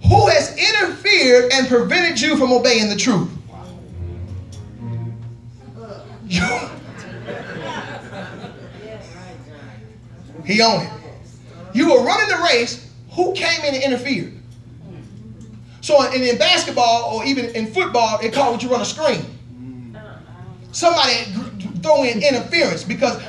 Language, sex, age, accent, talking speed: English, male, 30-49, American, 110 wpm